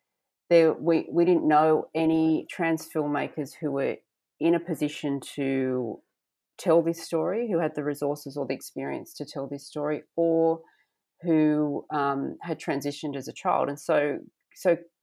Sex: female